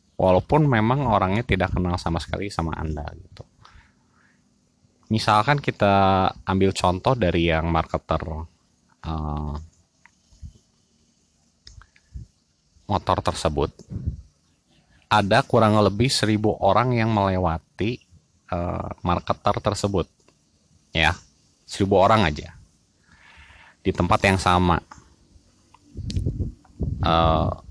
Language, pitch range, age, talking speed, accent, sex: Indonesian, 85-105 Hz, 30-49, 85 wpm, native, male